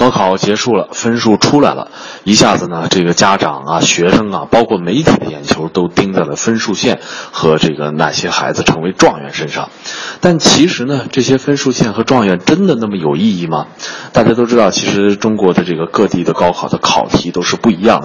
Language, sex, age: Chinese, male, 20-39